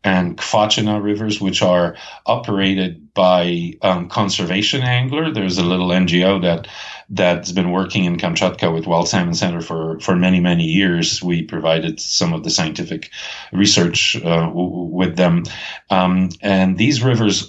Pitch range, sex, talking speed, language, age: 90-100 Hz, male, 155 wpm, English, 40-59